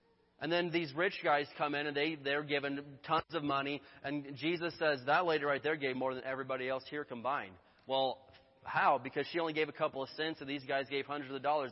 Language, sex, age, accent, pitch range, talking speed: English, male, 30-49, American, 140-180 Hz, 225 wpm